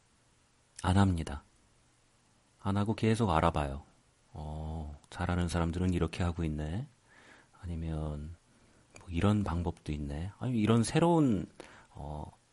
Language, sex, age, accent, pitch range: Korean, male, 40-59, native, 80-115 Hz